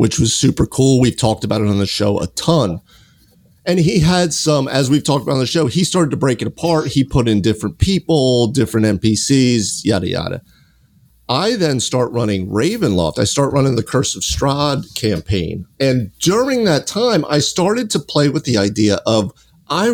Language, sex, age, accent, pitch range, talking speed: English, male, 40-59, American, 105-145 Hz, 195 wpm